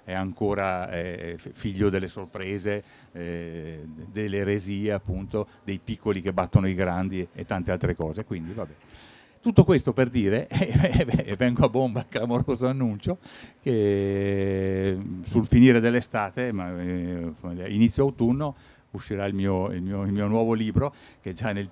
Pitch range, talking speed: 95-125 Hz, 135 wpm